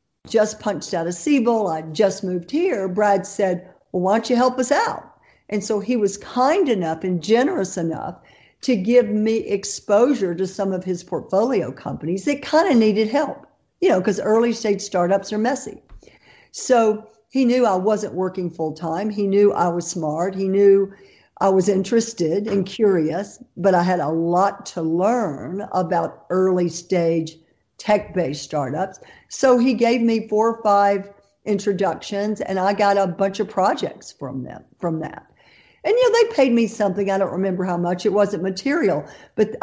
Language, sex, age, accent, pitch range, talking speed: English, female, 50-69, American, 185-220 Hz, 180 wpm